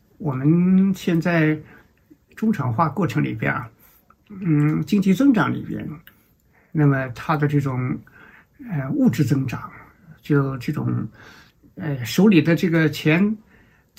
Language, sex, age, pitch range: Chinese, male, 60-79, 145-195 Hz